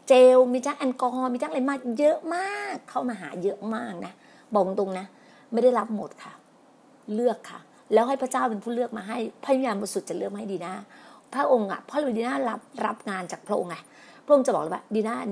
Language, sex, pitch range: Thai, female, 205-270 Hz